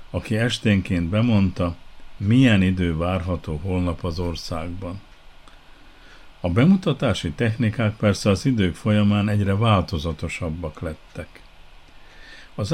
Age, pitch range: 50-69, 85-115 Hz